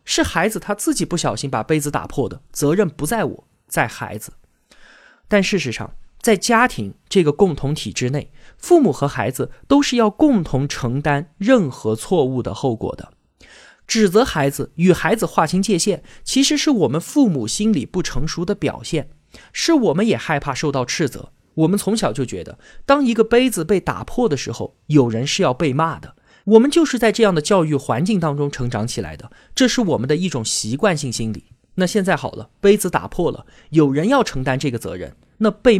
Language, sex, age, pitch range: Chinese, male, 20-39, 130-210 Hz